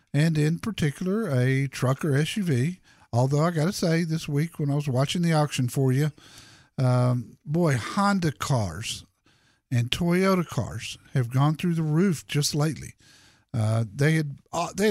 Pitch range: 125-170 Hz